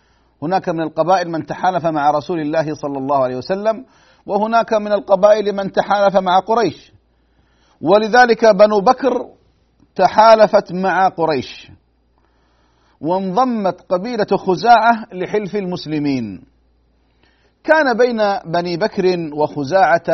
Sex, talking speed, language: male, 105 wpm, Arabic